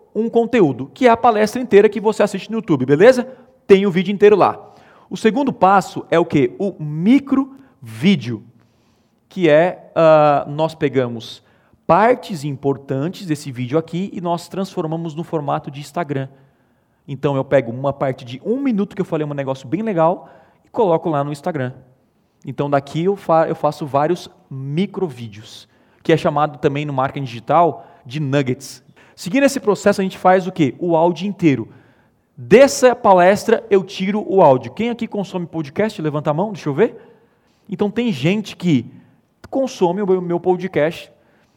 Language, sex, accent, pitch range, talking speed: Portuguese, male, Brazilian, 145-200 Hz, 165 wpm